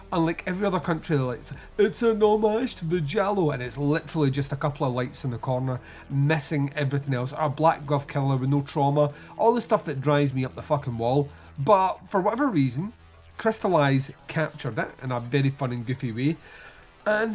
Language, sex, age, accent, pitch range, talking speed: English, male, 30-49, British, 135-170 Hz, 200 wpm